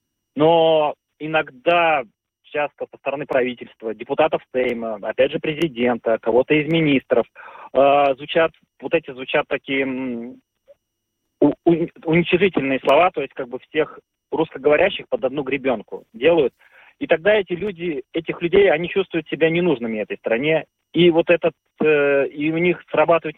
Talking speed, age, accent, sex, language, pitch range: 135 wpm, 30-49, native, male, Russian, 130-170 Hz